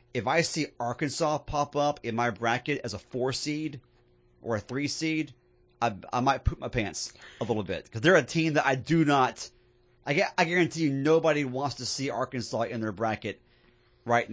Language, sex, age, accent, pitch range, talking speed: English, male, 30-49, American, 110-140 Hz, 200 wpm